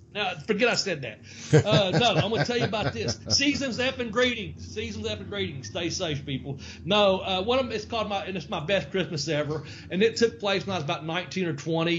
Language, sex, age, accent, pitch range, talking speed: English, male, 40-59, American, 150-190 Hz, 240 wpm